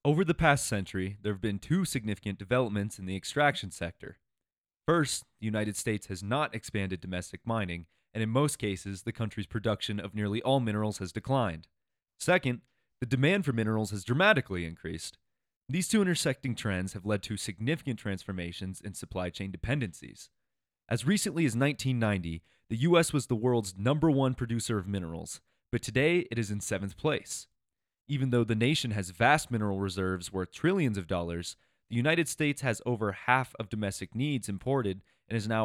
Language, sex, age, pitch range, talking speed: English, male, 30-49, 100-130 Hz, 175 wpm